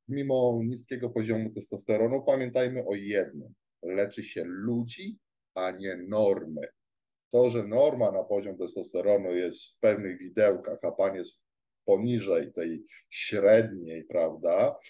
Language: Polish